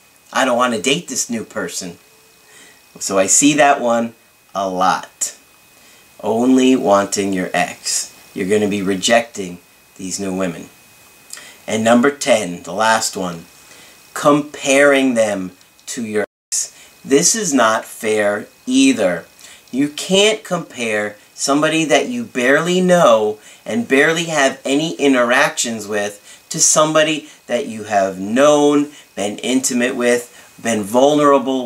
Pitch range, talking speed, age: 115-155 Hz, 130 wpm, 40-59